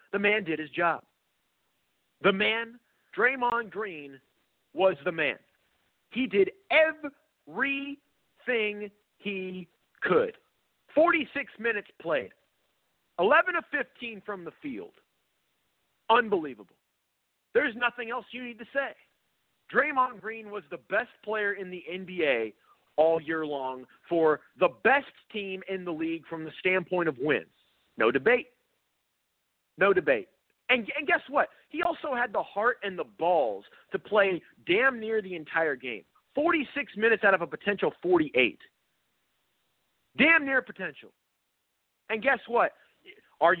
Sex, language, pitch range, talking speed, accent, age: male, English, 195-290 Hz, 130 wpm, American, 40-59